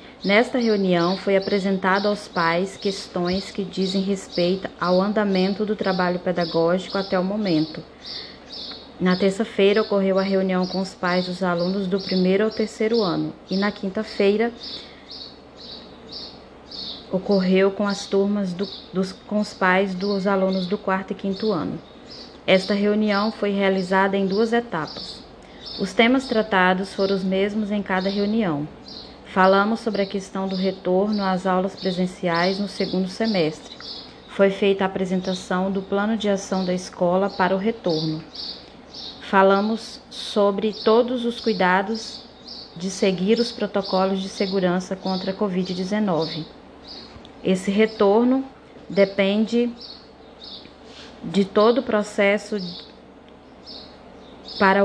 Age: 20-39